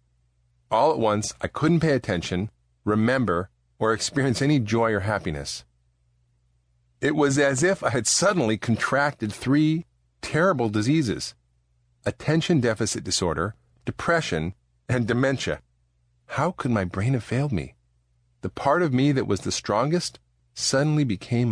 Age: 40-59